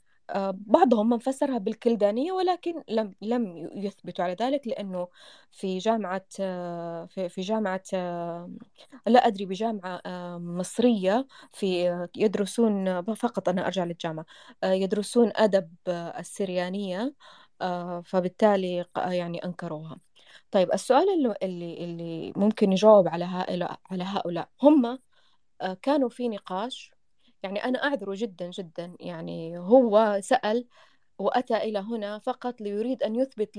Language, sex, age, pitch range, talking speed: English, female, 20-39, 185-235 Hz, 100 wpm